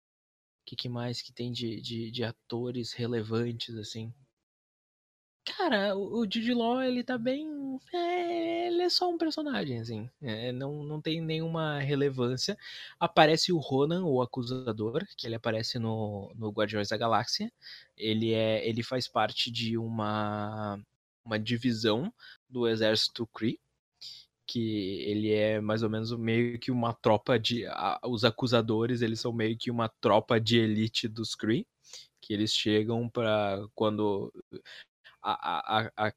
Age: 20-39